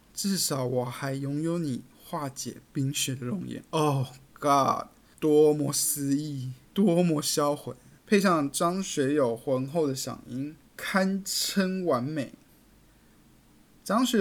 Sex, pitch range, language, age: male, 125-160 Hz, Chinese, 20-39